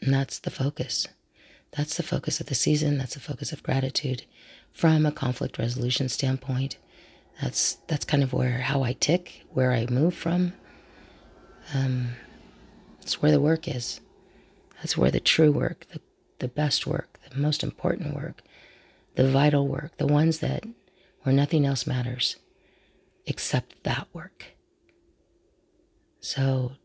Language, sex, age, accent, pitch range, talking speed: English, female, 40-59, American, 130-155 Hz, 145 wpm